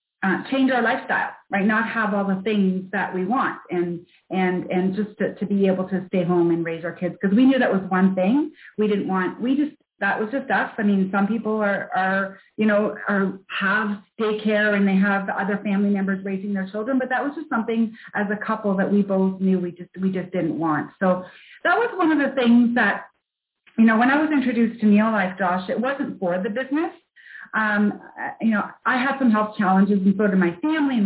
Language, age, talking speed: English, 30-49, 230 wpm